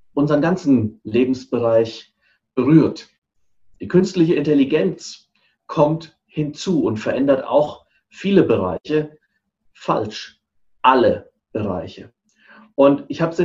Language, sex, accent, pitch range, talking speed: German, male, German, 130-165 Hz, 90 wpm